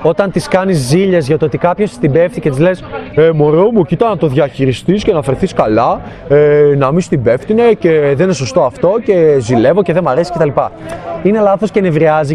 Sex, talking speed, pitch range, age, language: male, 225 wpm, 160-200 Hz, 20-39, Greek